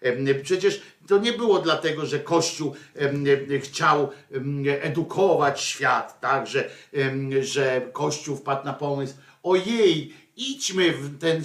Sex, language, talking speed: male, Polish, 105 wpm